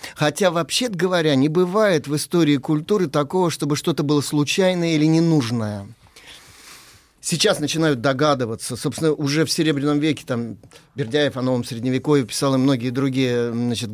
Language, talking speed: Russian, 140 wpm